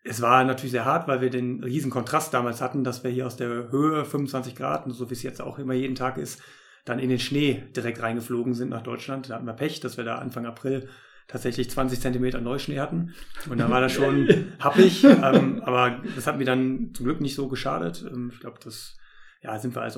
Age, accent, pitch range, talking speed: 30-49, German, 120-135 Hz, 230 wpm